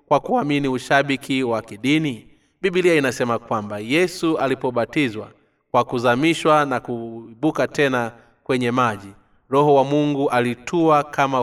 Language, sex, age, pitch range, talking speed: Swahili, male, 30-49, 120-145 Hz, 115 wpm